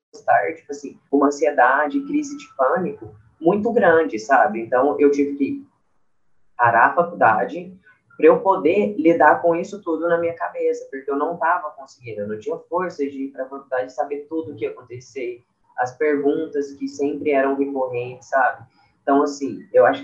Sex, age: female, 10-29